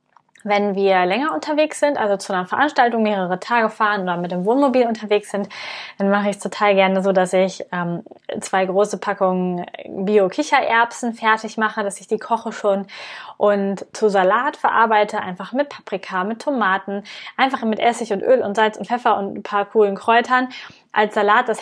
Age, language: 20-39, German